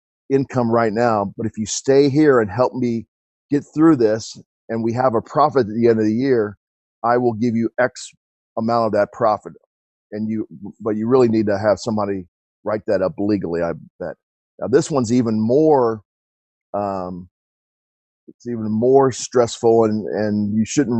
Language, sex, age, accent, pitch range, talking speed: English, male, 40-59, American, 95-115 Hz, 180 wpm